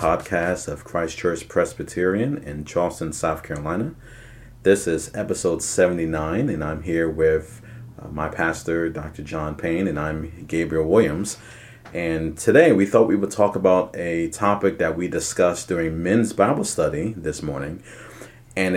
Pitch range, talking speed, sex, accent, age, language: 85-115 Hz, 150 wpm, male, American, 30-49, English